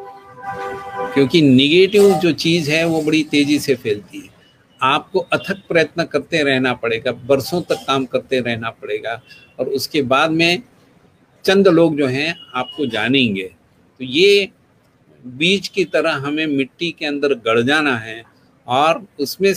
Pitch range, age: 125-155 Hz, 50-69